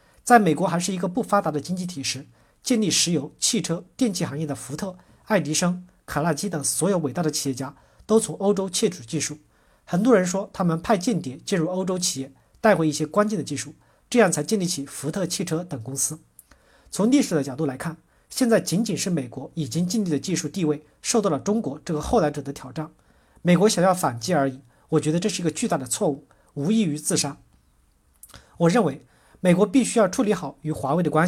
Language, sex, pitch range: Chinese, male, 145-205 Hz